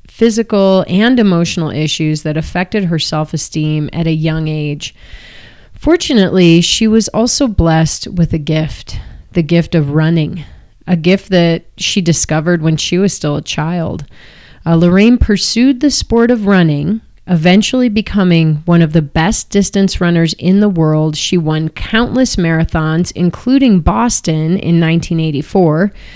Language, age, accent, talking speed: English, 30-49, American, 140 wpm